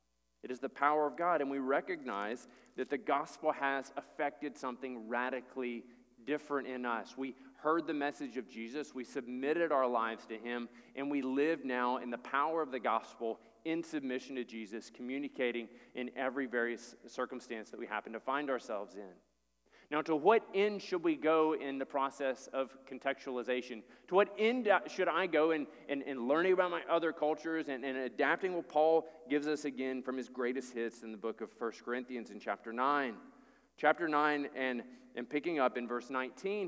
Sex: male